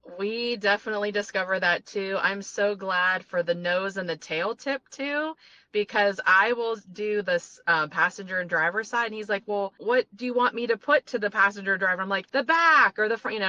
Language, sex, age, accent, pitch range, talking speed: English, female, 30-49, American, 170-225 Hz, 220 wpm